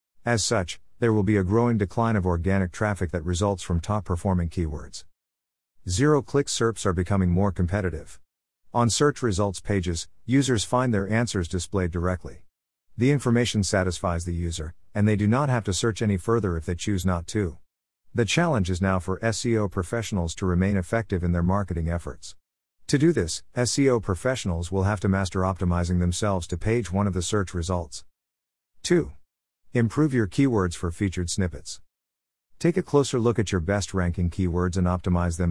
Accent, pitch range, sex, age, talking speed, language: American, 85-110 Hz, male, 50-69, 170 wpm, English